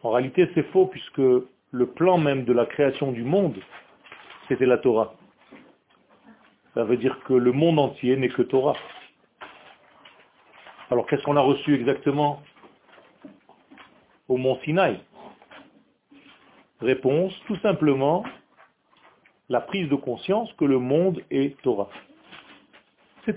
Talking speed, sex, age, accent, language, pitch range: 125 wpm, male, 40-59, French, French, 135-190 Hz